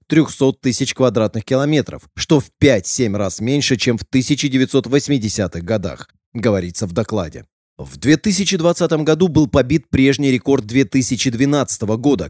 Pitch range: 110-140 Hz